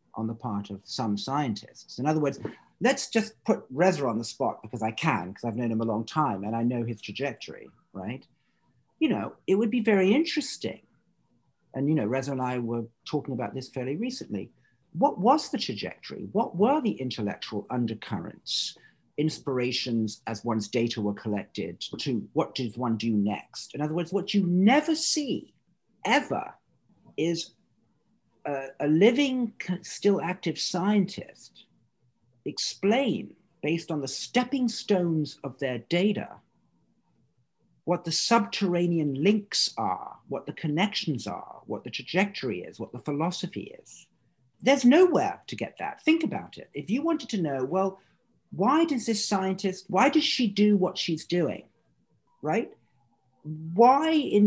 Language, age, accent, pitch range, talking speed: English, 50-69, British, 120-205 Hz, 155 wpm